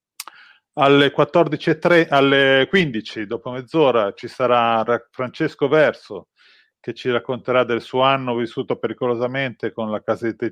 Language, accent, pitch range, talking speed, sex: Italian, native, 115-140 Hz, 130 wpm, male